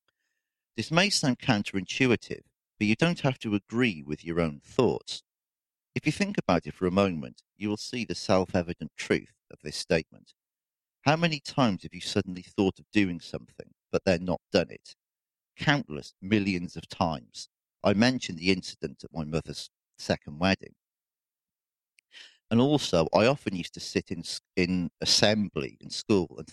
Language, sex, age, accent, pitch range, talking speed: English, male, 40-59, British, 85-125 Hz, 165 wpm